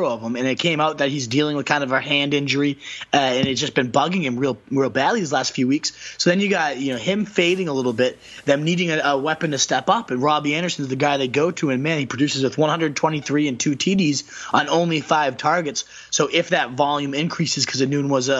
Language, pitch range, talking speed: English, 140-165 Hz, 260 wpm